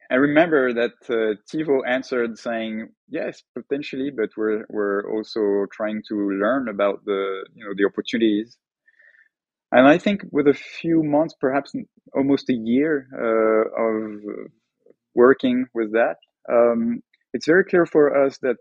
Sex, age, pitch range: male, 20-39, 115-140 Hz